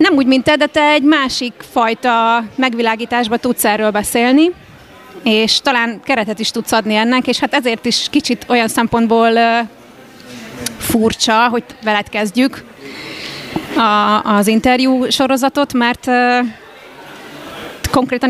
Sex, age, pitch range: female, 30-49, 220-255 Hz